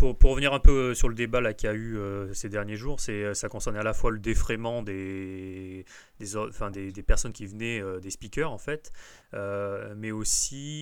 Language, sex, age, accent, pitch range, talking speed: French, male, 30-49, French, 95-115 Hz, 220 wpm